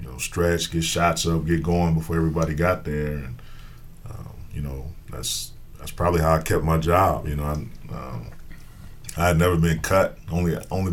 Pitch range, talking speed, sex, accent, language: 75-85 Hz, 180 wpm, male, American, English